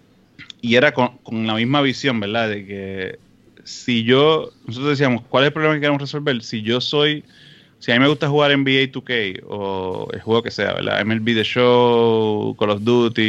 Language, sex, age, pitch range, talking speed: Spanish, male, 30-49, 110-135 Hz, 200 wpm